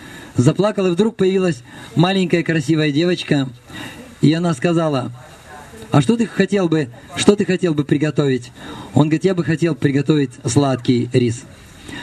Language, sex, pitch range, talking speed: Russian, male, 130-165 Hz, 140 wpm